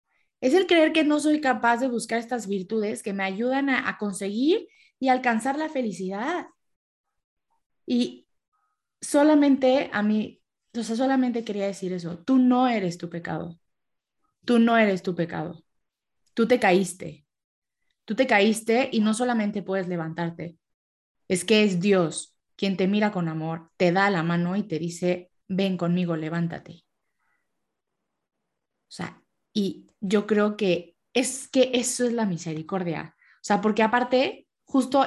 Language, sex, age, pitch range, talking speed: Spanish, female, 20-39, 195-280 Hz, 150 wpm